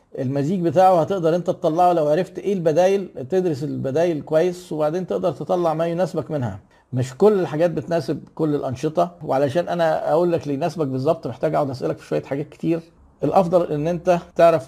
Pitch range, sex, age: 140-180 Hz, male, 50-69